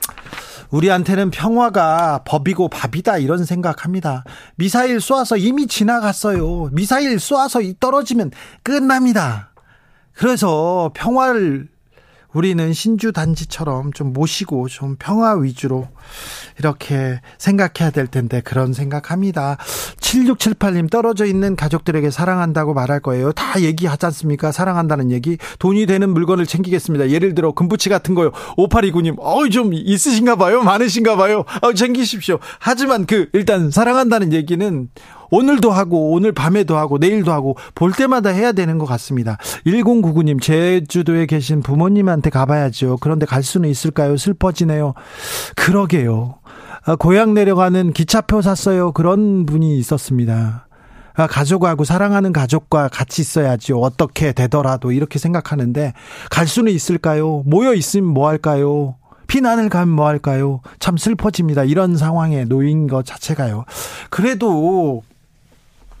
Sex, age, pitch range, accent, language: male, 40-59, 145-200 Hz, native, Korean